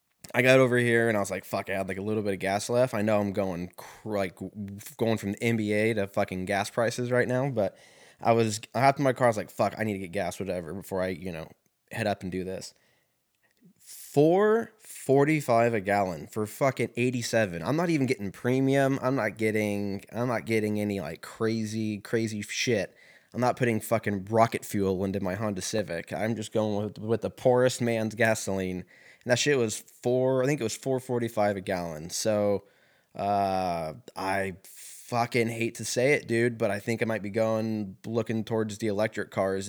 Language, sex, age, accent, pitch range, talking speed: English, male, 20-39, American, 100-120 Hz, 205 wpm